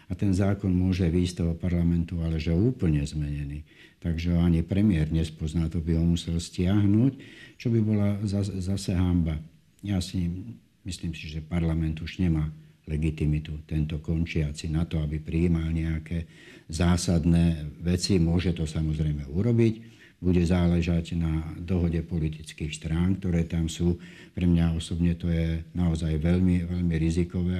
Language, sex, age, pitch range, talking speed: Slovak, male, 60-79, 80-90 Hz, 140 wpm